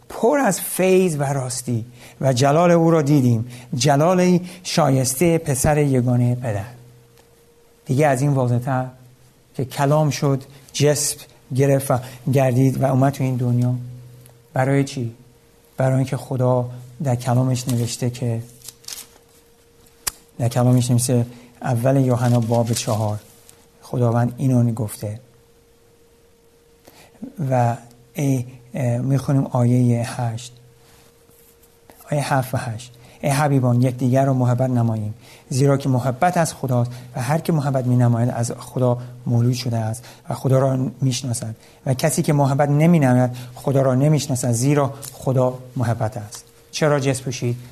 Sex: male